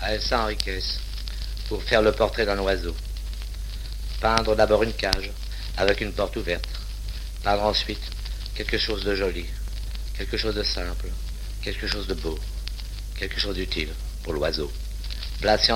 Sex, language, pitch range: male, French, 90-105 Hz